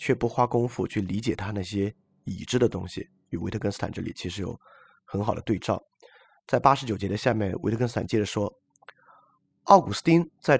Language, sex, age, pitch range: Chinese, male, 30-49, 100-140 Hz